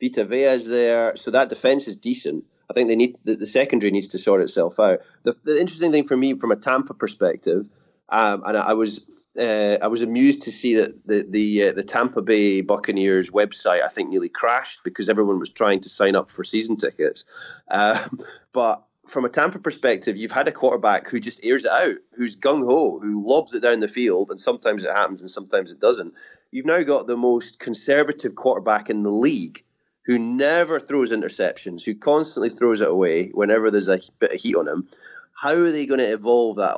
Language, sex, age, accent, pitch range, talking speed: English, male, 20-39, British, 105-170 Hz, 215 wpm